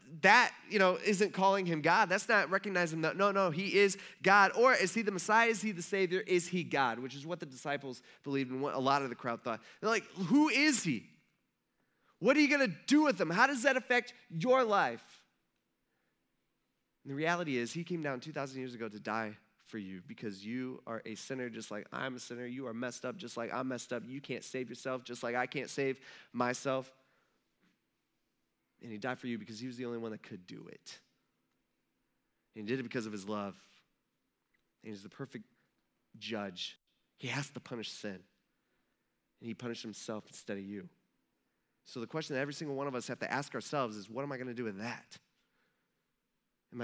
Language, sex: English, male